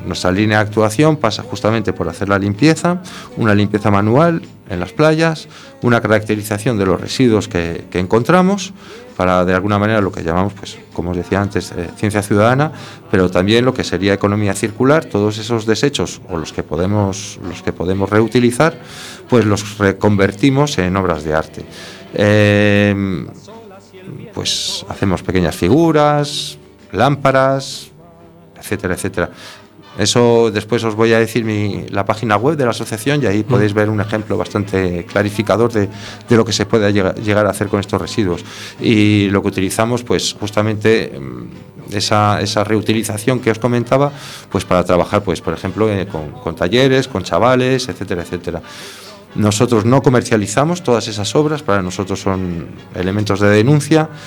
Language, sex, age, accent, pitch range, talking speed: Spanish, male, 40-59, Spanish, 95-120 Hz, 155 wpm